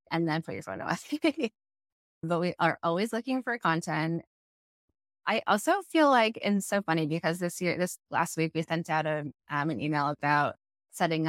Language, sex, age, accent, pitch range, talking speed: English, female, 20-39, American, 155-220 Hz, 180 wpm